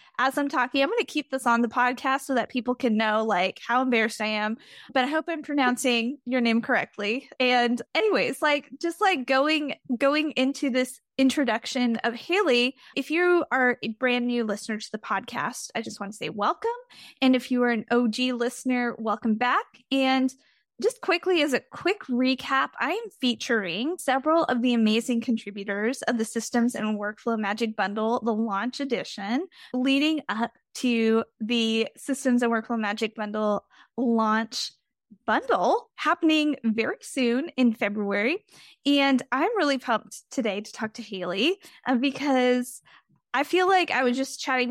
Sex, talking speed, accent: female, 165 wpm, American